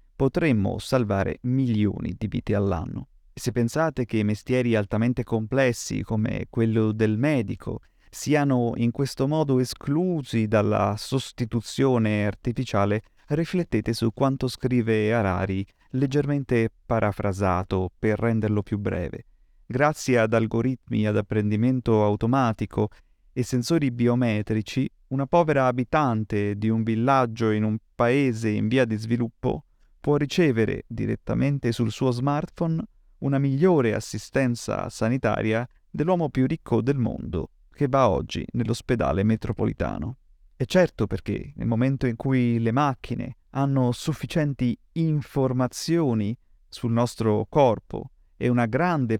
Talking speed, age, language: 115 wpm, 30-49, Italian